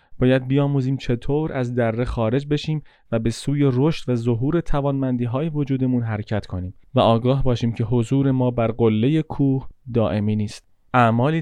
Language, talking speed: Persian, 150 wpm